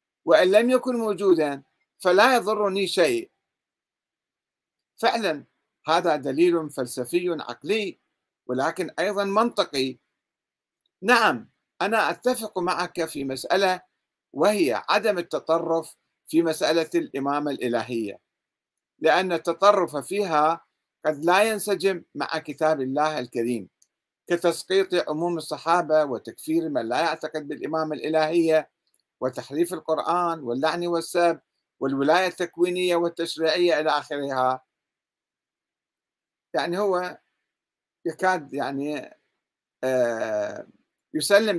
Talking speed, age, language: 90 wpm, 50-69, Arabic